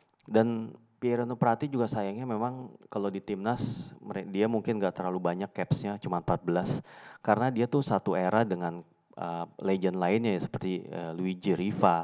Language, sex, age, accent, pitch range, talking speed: Indonesian, male, 30-49, native, 90-115 Hz, 155 wpm